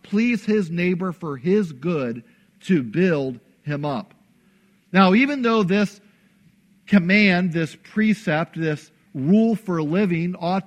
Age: 50-69